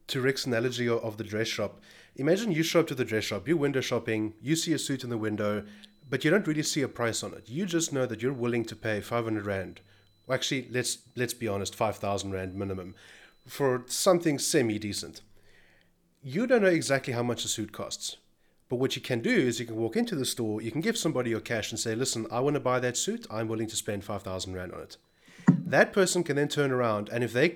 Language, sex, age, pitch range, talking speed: English, male, 30-49, 110-140 Hz, 235 wpm